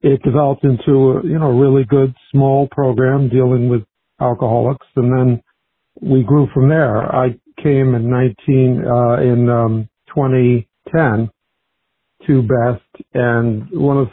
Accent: American